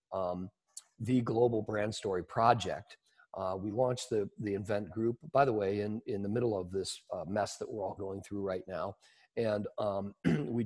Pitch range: 100-115 Hz